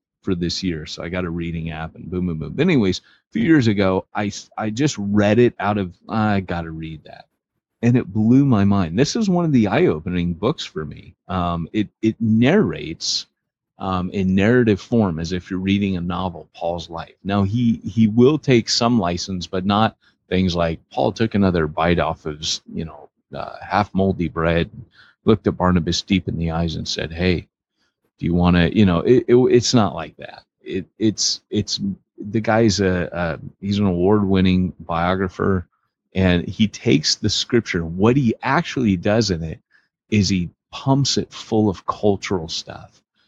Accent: American